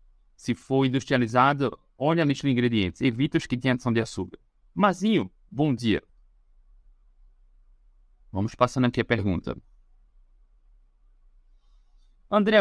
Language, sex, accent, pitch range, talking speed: Portuguese, male, Brazilian, 115-160 Hz, 110 wpm